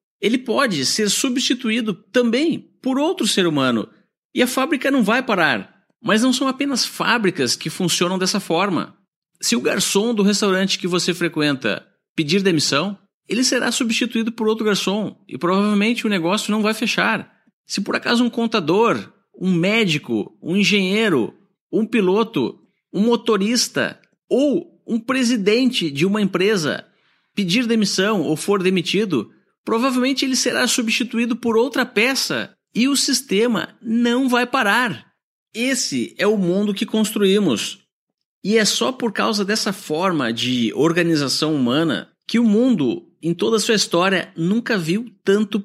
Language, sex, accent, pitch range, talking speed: Portuguese, male, Brazilian, 175-235 Hz, 145 wpm